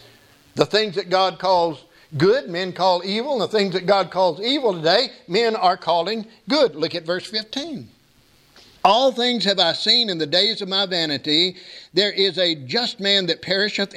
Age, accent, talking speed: 60-79, American, 180 wpm